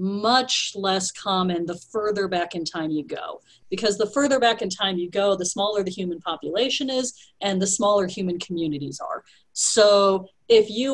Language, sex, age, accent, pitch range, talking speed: English, female, 40-59, American, 175-225 Hz, 180 wpm